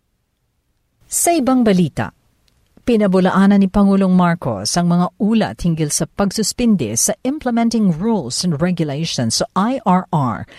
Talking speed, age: 120 wpm, 50-69